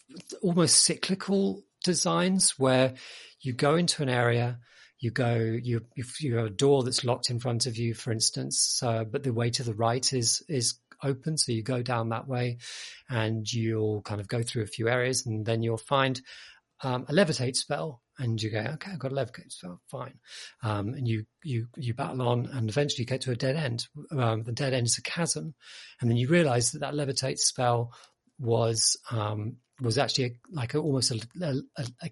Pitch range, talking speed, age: 120-140 Hz, 205 wpm, 40-59